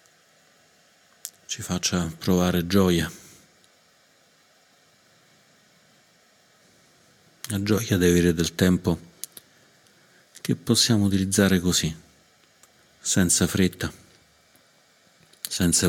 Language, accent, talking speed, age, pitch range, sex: Italian, native, 65 wpm, 50-69, 85-100 Hz, male